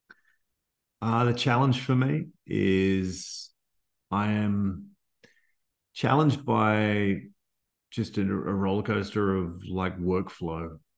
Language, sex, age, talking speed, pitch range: English, male, 30-49, 105 wpm, 90-105 Hz